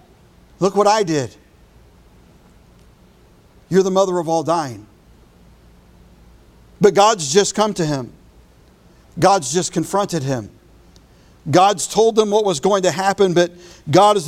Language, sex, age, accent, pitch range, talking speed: English, male, 50-69, American, 185-250 Hz, 130 wpm